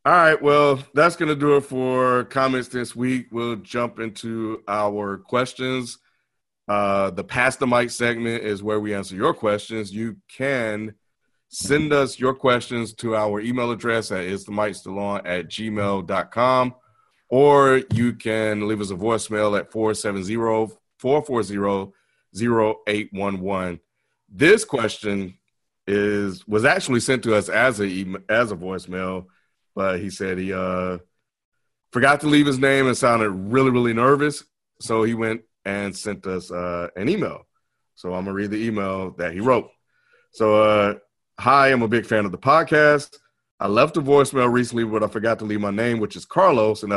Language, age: English, 30-49